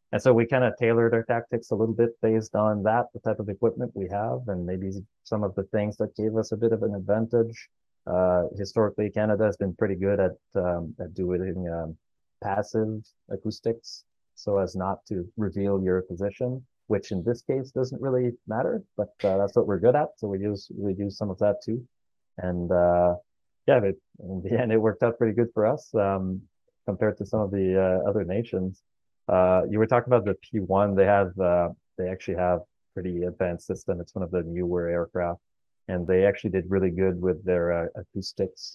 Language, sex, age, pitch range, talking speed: English, male, 30-49, 90-110 Hz, 210 wpm